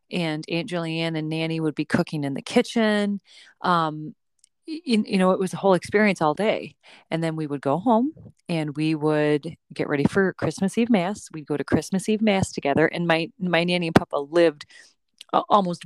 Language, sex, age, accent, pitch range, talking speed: English, female, 30-49, American, 160-195 Hz, 195 wpm